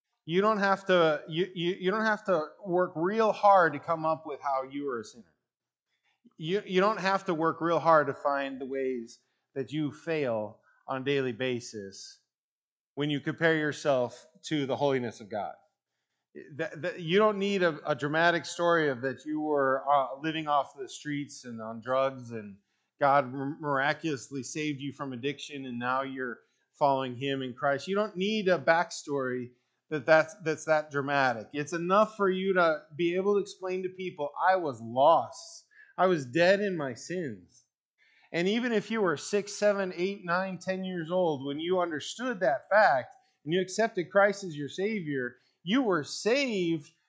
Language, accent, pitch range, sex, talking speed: English, American, 140-200 Hz, male, 180 wpm